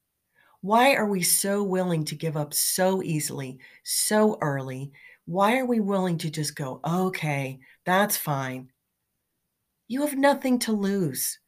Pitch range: 145-185 Hz